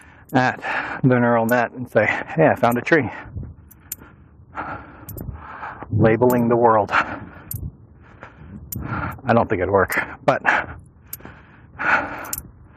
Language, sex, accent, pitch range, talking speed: English, male, American, 110-140 Hz, 95 wpm